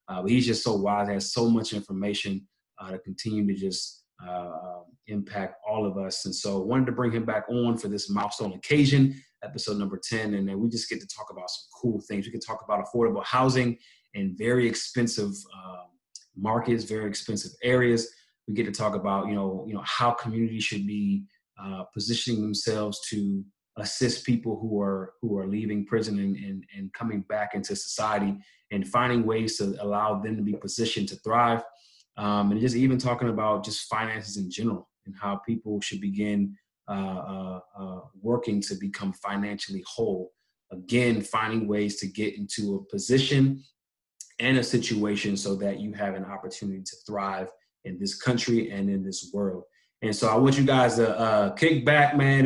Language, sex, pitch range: English, male, 100-120 Hz